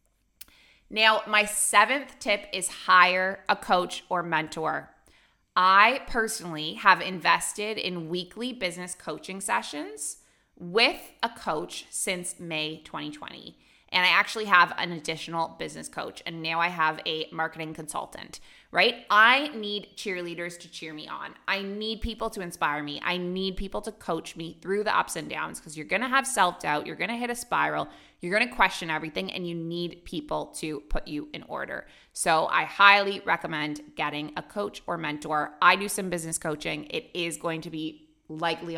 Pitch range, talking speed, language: 160-205 Hz, 170 wpm, English